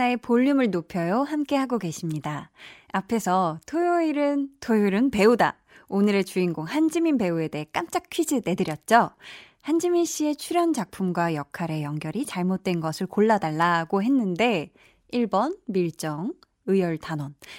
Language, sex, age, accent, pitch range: Korean, female, 20-39, native, 175-275 Hz